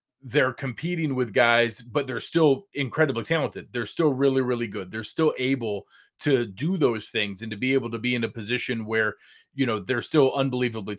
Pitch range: 115-135 Hz